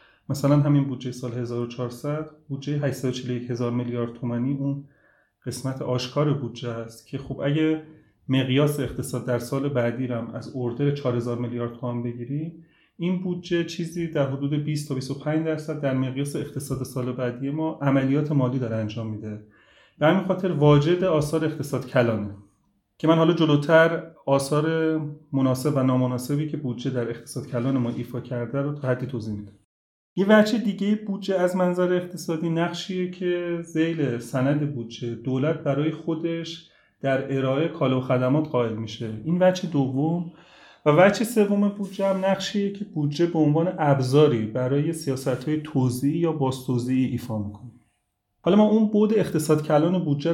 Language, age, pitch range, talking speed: Persian, 30-49, 125-160 Hz, 150 wpm